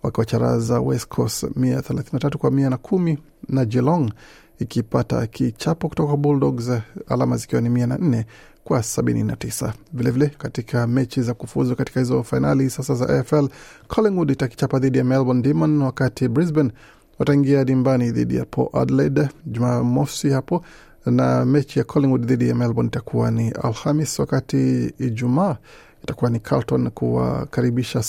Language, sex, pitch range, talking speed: Swahili, male, 120-145 Hz, 130 wpm